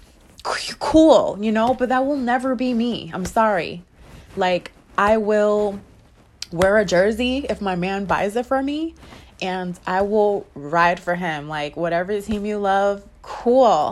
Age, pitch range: 20-39, 165-235 Hz